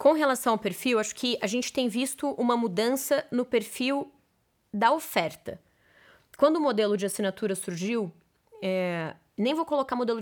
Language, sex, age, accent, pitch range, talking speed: Portuguese, female, 20-39, Brazilian, 200-255 Hz, 160 wpm